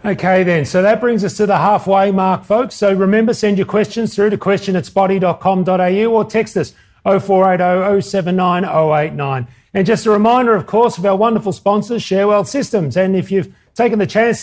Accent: Australian